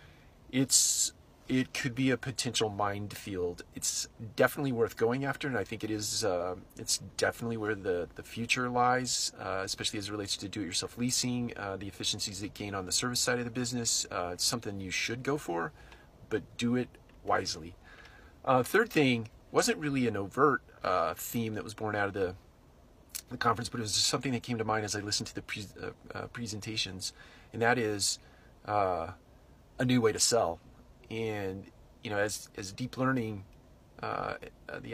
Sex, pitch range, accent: male, 100-120 Hz, American